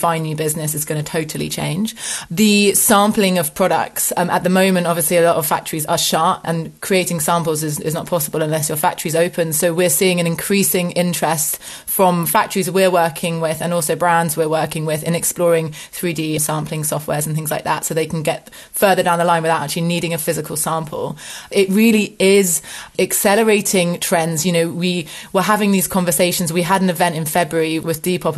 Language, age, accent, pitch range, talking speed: English, 20-39, British, 165-185 Hz, 200 wpm